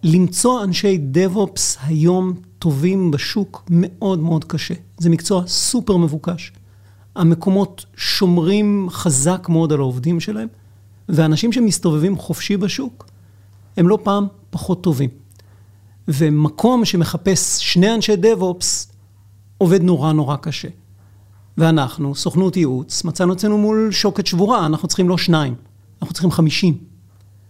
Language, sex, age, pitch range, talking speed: Hebrew, male, 40-59, 130-185 Hz, 115 wpm